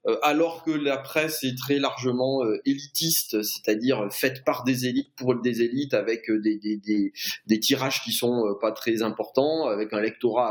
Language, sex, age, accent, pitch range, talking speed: French, male, 30-49, French, 120-160 Hz, 170 wpm